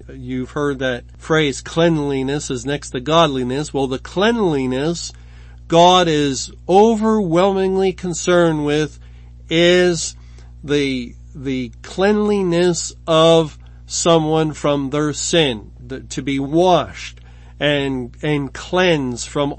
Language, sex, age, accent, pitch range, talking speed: English, male, 50-69, American, 130-170 Hz, 100 wpm